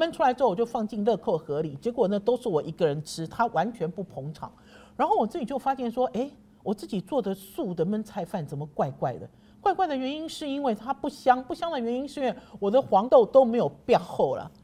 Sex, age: male, 50-69